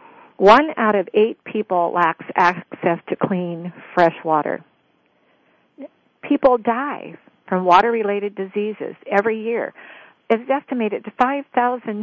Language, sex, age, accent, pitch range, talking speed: English, female, 50-69, American, 180-245 Hz, 110 wpm